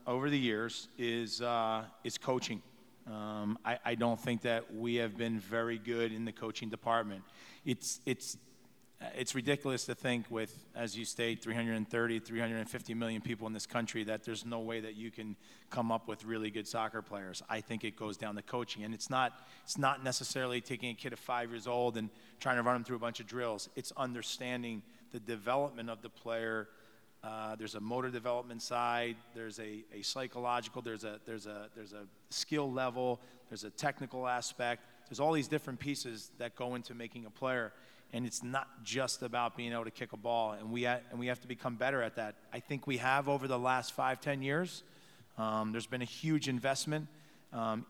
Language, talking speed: English, 205 wpm